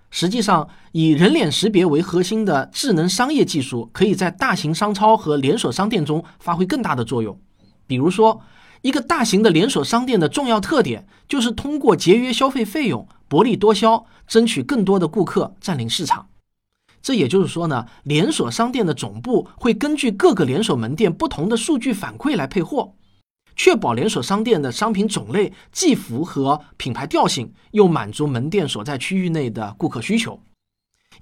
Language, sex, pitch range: Chinese, male, 150-230 Hz